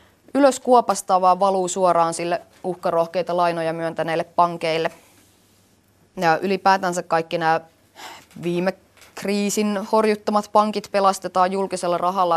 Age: 20-39